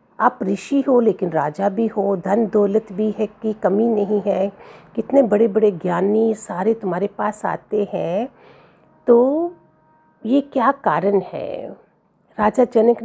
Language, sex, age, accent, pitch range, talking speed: Hindi, female, 50-69, native, 205-280 Hz, 145 wpm